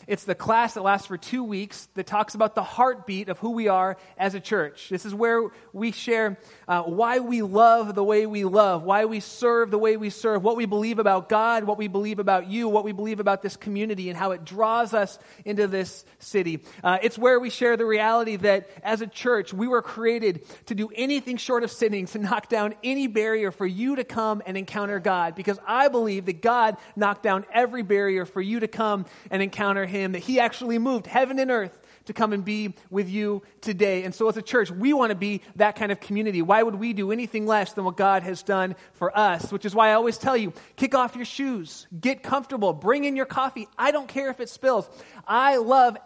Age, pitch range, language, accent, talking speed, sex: 30-49, 195-240 Hz, English, American, 230 wpm, male